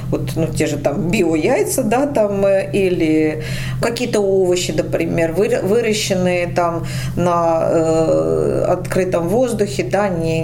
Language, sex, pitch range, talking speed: Russian, female, 150-190 Hz, 115 wpm